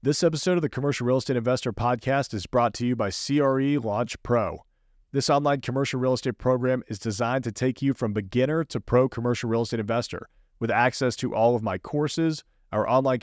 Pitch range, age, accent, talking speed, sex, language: 110-130 Hz, 40-59, American, 205 wpm, male, English